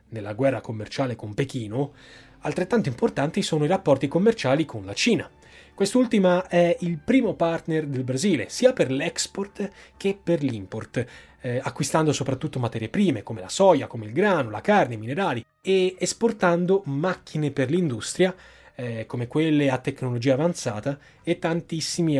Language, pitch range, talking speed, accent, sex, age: Italian, 125-165 Hz, 150 wpm, native, male, 20-39